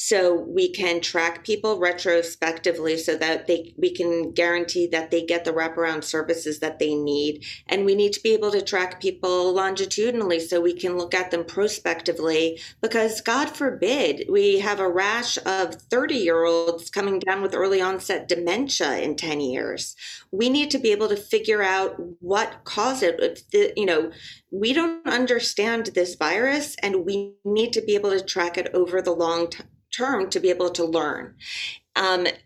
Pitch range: 170-205 Hz